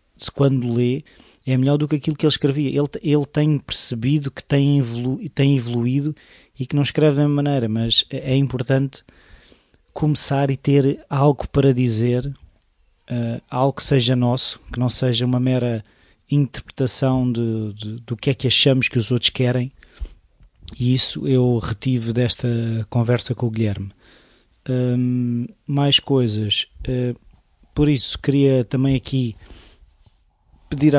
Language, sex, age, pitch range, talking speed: Portuguese, male, 20-39, 120-135 Hz, 140 wpm